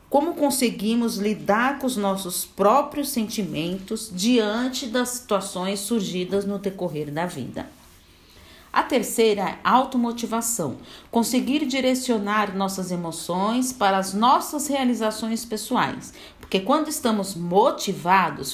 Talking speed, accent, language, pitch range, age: 105 wpm, Brazilian, Portuguese, 185-245 Hz, 40-59